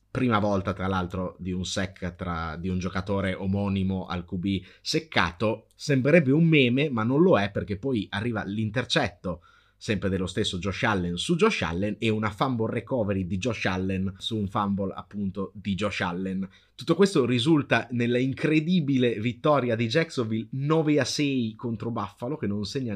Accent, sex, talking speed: native, male, 160 wpm